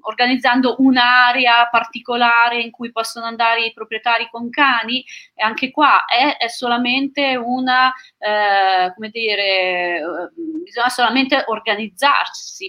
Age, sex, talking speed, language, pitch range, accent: 30-49, female, 115 wpm, Italian, 210-250 Hz, native